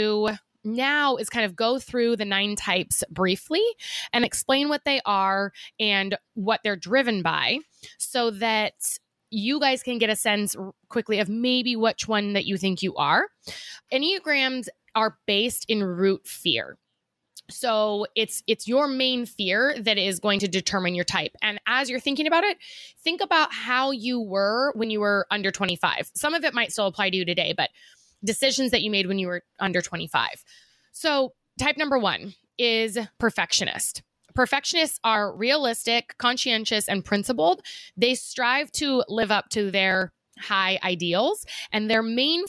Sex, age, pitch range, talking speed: female, 20-39, 200-260 Hz, 165 wpm